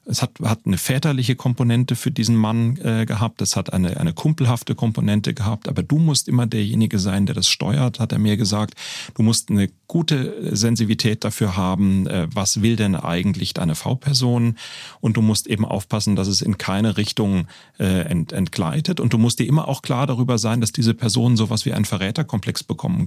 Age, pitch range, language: 30-49, 100-125 Hz, German